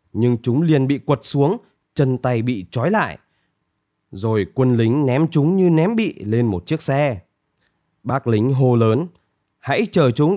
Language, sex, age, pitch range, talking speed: Vietnamese, male, 20-39, 110-165 Hz, 175 wpm